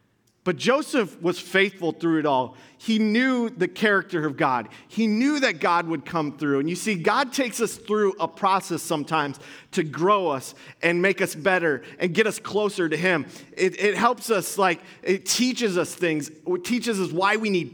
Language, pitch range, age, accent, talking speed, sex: English, 135-180 Hz, 30-49, American, 195 wpm, male